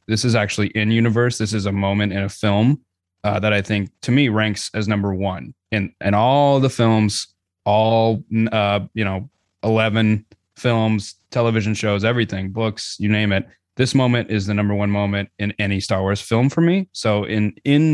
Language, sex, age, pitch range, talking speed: English, male, 20-39, 100-115 Hz, 185 wpm